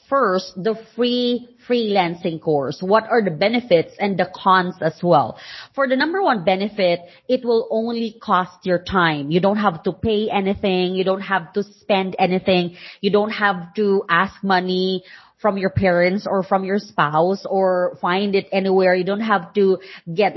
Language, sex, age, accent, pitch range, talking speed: English, female, 20-39, Filipino, 185-220 Hz, 175 wpm